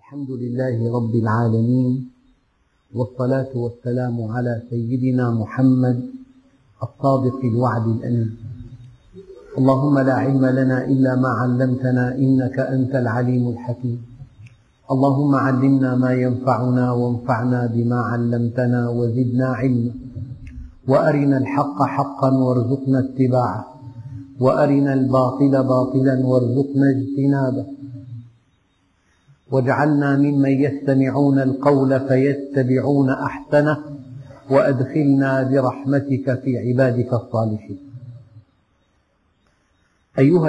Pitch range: 120-140 Hz